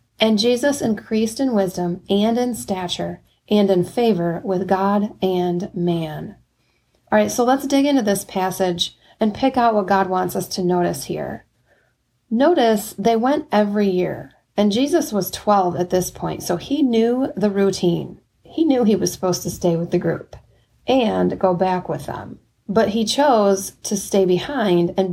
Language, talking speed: English, 170 wpm